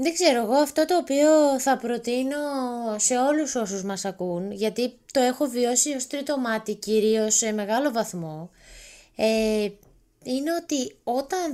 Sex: female